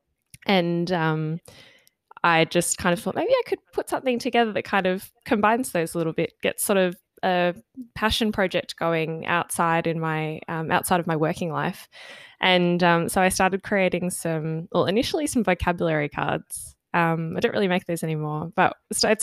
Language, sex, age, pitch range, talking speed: English, female, 10-29, 175-215 Hz, 180 wpm